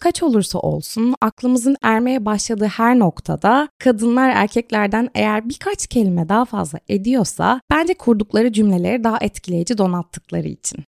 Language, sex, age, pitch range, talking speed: Turkish, female, 20-39, 185-250 Hz, 125 wpm